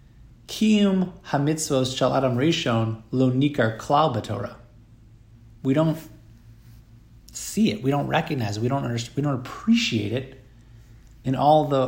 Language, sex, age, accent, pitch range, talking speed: English, male, 30-49, American, 115-140 Hz, 100 wpm